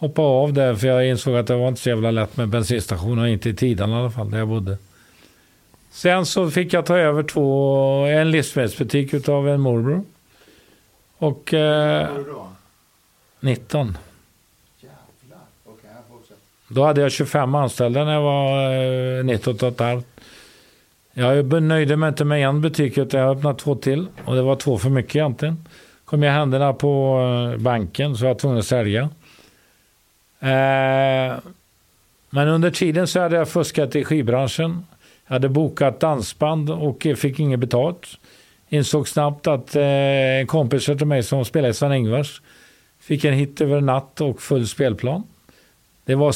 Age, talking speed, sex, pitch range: 50-69, 160 wpm, male, 120-150 Hz